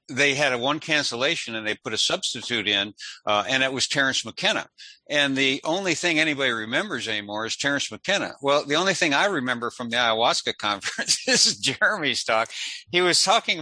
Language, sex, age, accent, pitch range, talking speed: English, male, 60-79, American, 115-160 Hz, 195 wpm